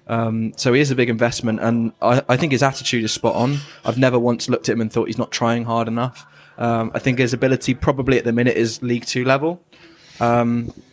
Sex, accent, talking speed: male, British, 235 wpm